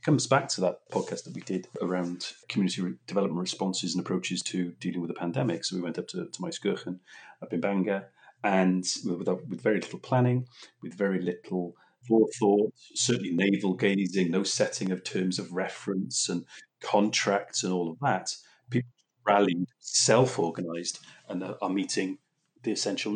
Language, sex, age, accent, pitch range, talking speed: English, male, 30-49, British, 90-100 Hz, 160 wpm